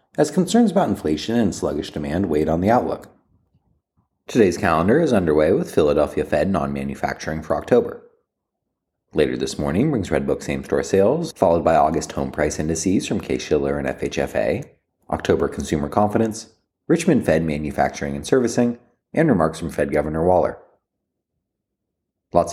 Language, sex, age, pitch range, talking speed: English, male, 30-49, 75-100 Hz, 150 wpm